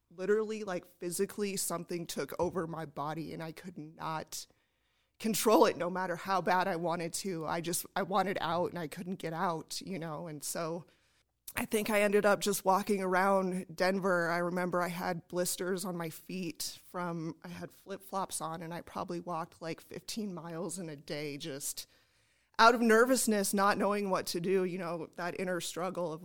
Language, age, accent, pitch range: English, 30-49, American, 170-195 Hz